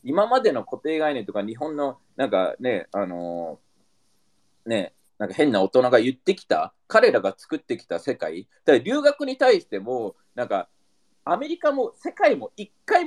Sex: male